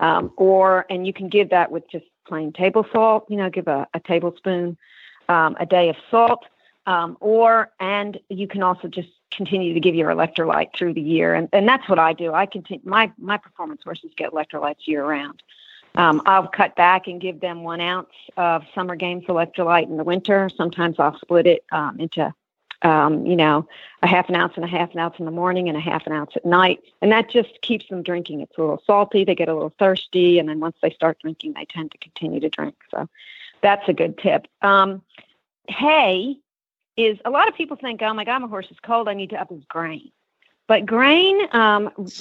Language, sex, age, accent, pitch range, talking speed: English, female, 50-69, American, 170-215 Hz, 220 wpm